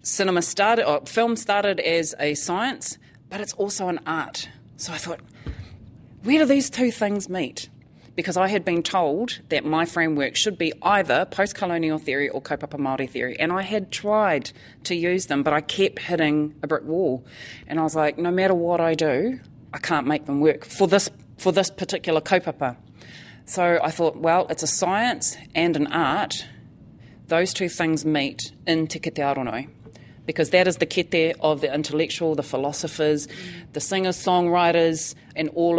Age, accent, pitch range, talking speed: 30-49, Australian, 145-175 Hz, 175 wpm